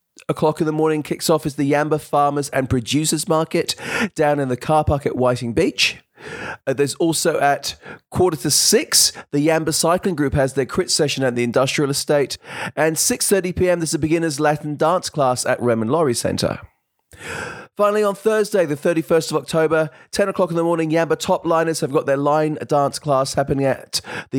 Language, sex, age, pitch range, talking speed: English, male, 30-49, 140-170 Hz, 190 wpm